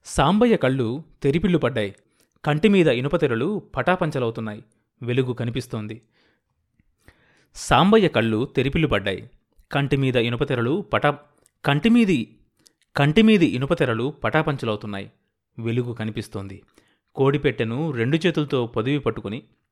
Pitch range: 110-145 Hz